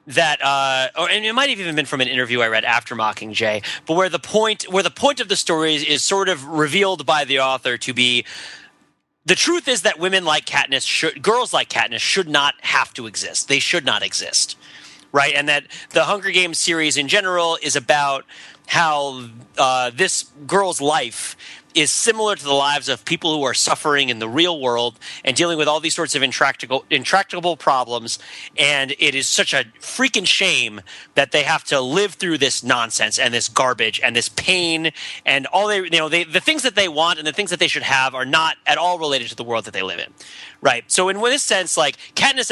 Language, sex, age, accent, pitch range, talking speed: English, male, 30-49, American, 135-190 Hz, 215 wpm